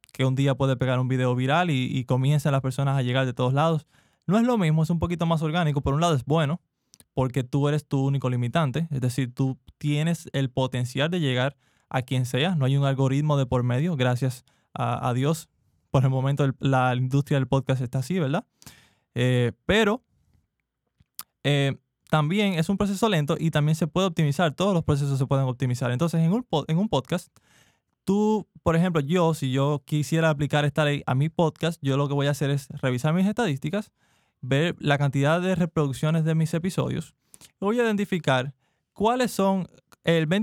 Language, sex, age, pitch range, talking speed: Spanish, male, 20-39, 135-170 Hz, 195 wpm